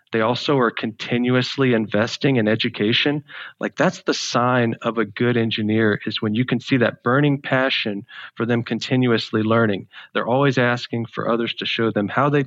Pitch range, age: 110-130 Hz, 40-59